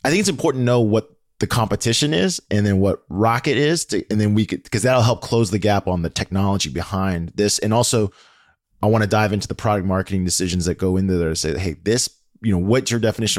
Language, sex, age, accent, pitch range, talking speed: English, male, 20-39, American, 95-125 Hz, 245 wpm